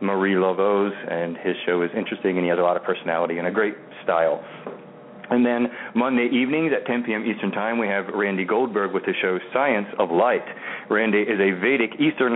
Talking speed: 205 wpm